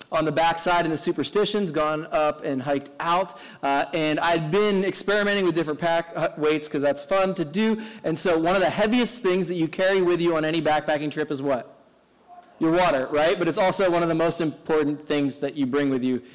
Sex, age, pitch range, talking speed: male, 20-39, 150-190 Hz, 220 wpm